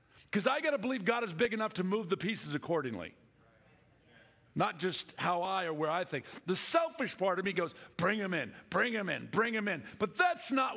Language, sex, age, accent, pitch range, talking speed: English, male, 50-69, American, 145-220 Hz, 215 wpm